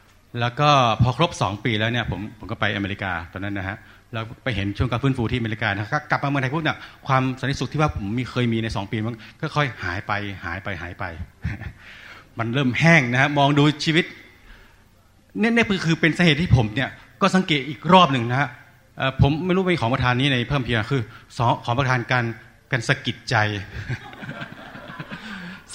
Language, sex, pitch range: Thai, male, 110-160 Hz